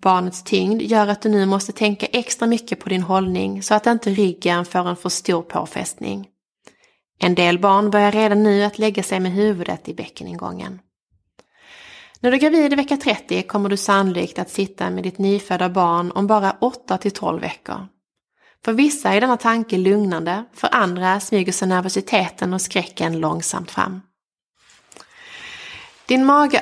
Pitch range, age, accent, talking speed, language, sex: 185-220 Hz, 20-39, Swedish, 160 wpm, English, female